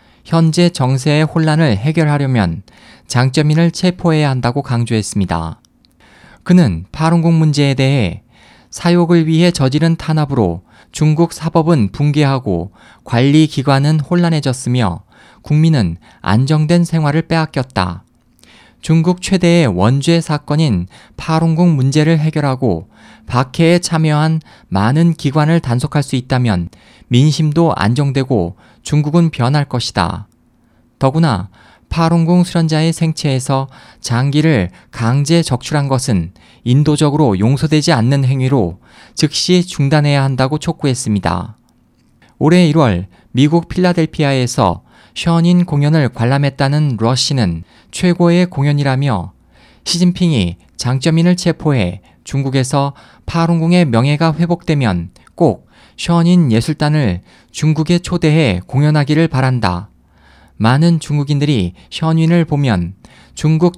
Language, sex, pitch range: Korean, male, 115-160 Hz